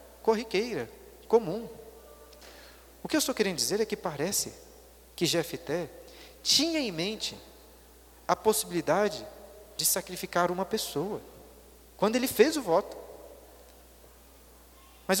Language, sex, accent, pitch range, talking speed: Portuguese, male, Brazilian, 165-225 Hz, 110 wpm